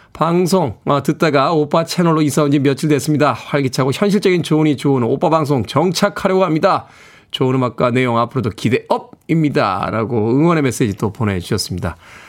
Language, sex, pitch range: Korean, male, 125-190 Hz